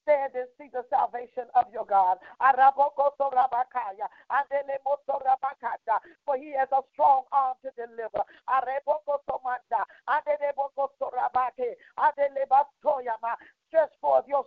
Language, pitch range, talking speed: English, 255-290 Hz, 80 wpm